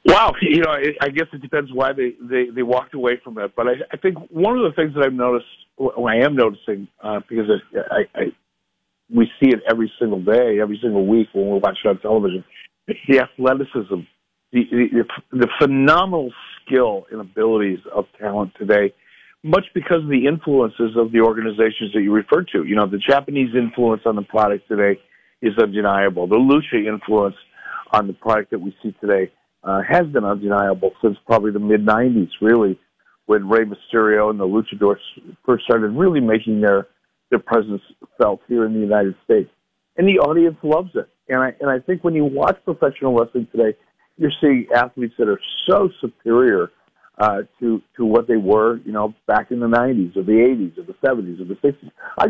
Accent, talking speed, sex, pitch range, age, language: American, 195 wpm, male, 105-135 Hz, 50-69, English